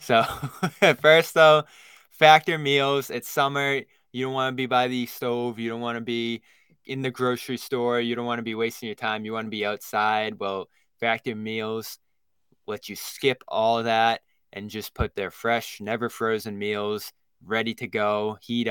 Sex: male